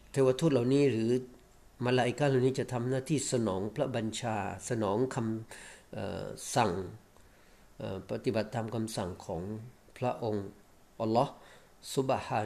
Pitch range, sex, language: 105-130 Hz, male, Thai